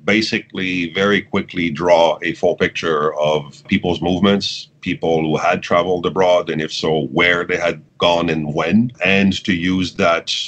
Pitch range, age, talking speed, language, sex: 80-95 Hz, 40-59, 160 wpm, English, male